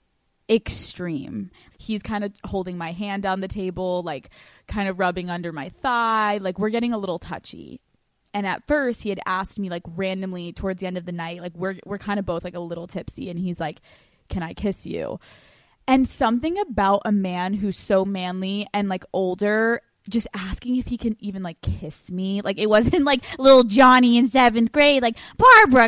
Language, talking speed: English, 200 wpm